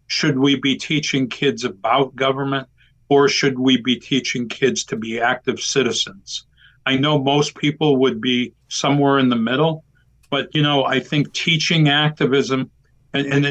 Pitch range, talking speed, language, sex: 135-155 Hz, 160 wpm, English, male